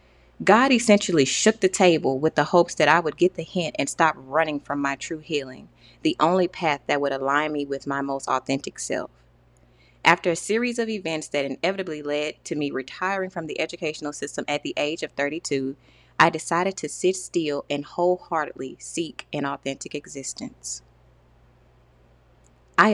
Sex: female